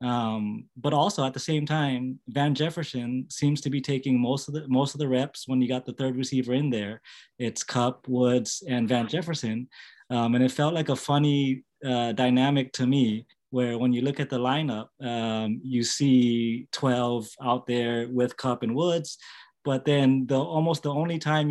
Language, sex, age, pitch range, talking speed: English, male, 20-39, 120-140 Hz, 195 wpm